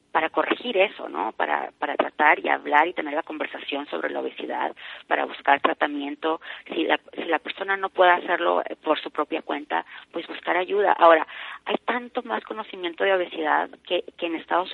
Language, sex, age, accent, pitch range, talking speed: Spanish, female, 30-49, Mexican, 145-180 Hz, 185 wpm